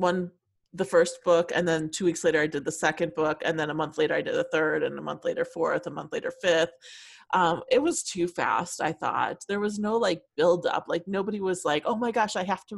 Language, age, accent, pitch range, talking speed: English, 30-49, American, 175-275 Hz, 260 wpm